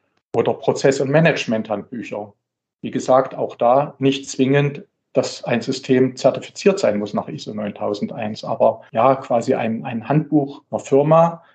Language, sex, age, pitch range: German, male, 50-69, 120-145 Hz